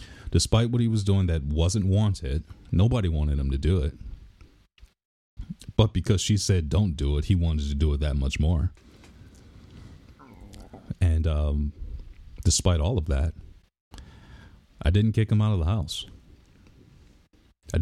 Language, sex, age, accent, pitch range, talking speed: English, male, 40-59, American, 80-100 Hz, 150 wpm